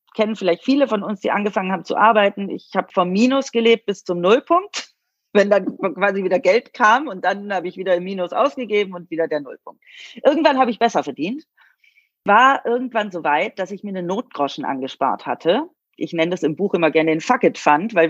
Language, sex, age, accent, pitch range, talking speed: German, female, 30-49, German, 170-220 Hz, 210 wpm